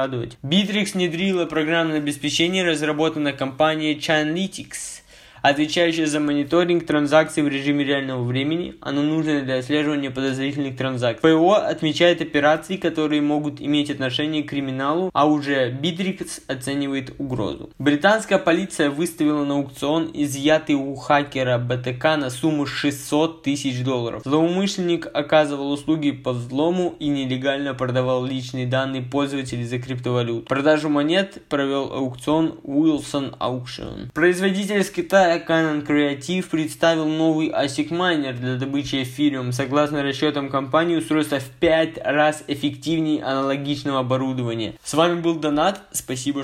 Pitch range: 130-160 Hz